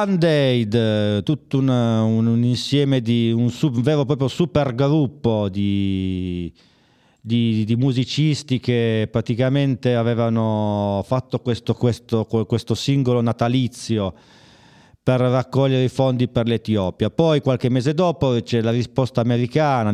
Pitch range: 105-135 Hz